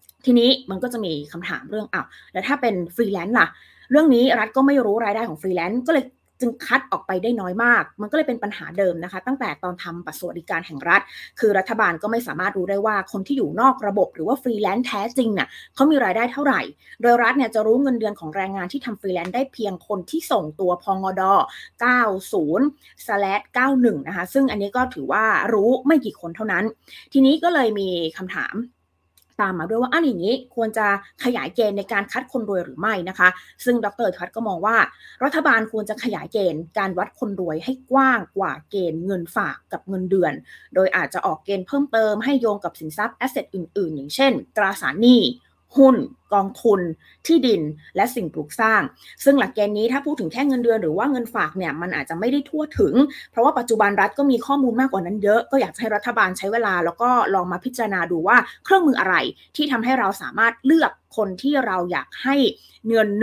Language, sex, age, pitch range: Thai, female, 20-39, 195-260 Hz